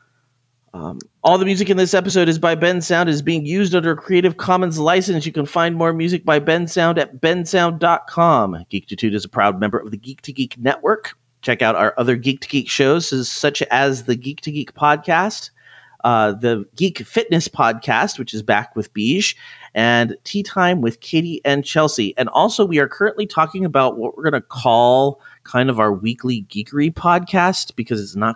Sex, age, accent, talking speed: male, 30-49, American, 200 wpm